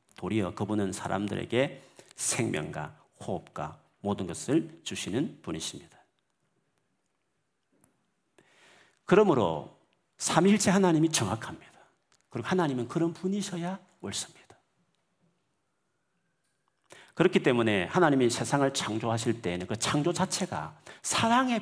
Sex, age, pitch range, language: male, 40-59, 105-145 Hz, Korean